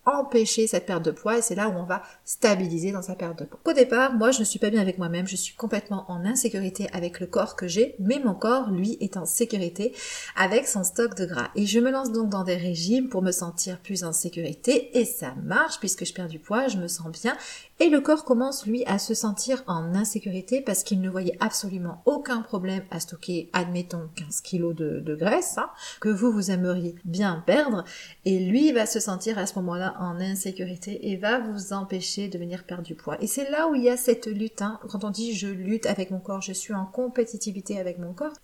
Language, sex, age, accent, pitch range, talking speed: French, female, 40-59, French, 185-230 Hz, 235 wpm